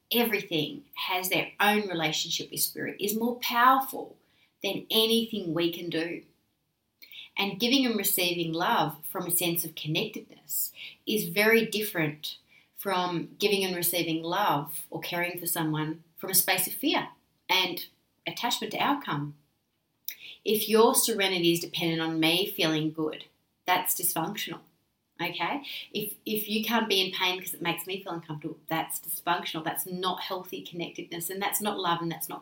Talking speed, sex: 155 wpm, female